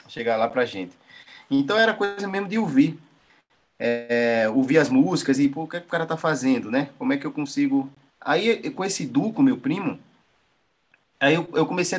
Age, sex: 20-39, male